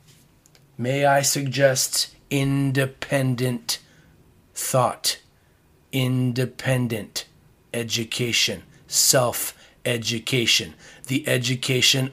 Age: 30-49